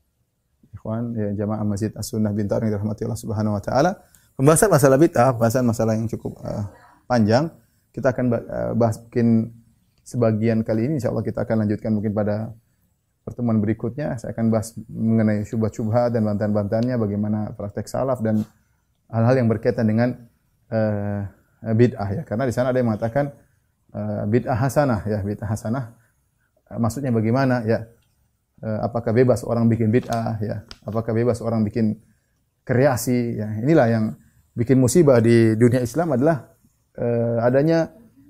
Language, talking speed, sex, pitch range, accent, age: Indonesian, 140 wpm, male, 110-135 Hz, native, 20-39